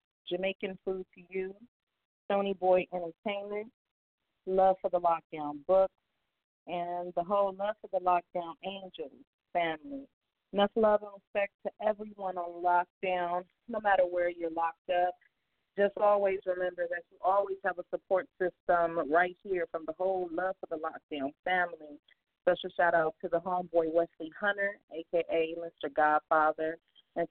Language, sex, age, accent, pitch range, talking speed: English, female, 40-59, American, 170-200 Hz, 145 wpm